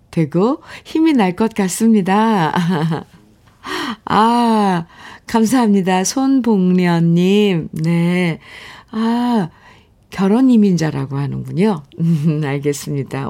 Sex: female